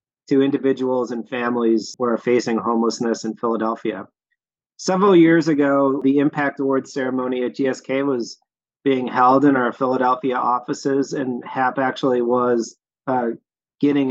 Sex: male